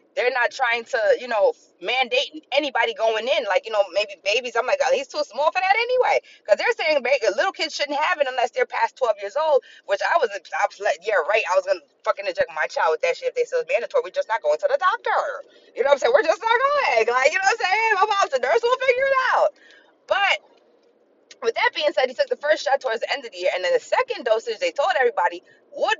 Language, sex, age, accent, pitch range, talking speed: English, female, 20-39, American, 270-430 Hz, 270 wpm